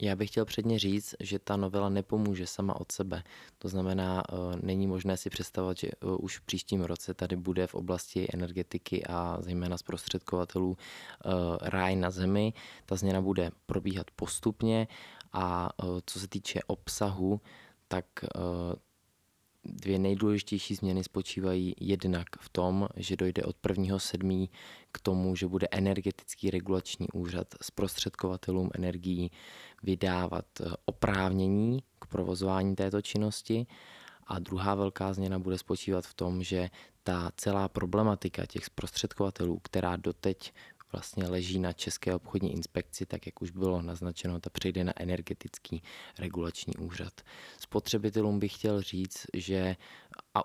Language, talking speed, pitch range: Czech, 130 wpm, 90-100 Hz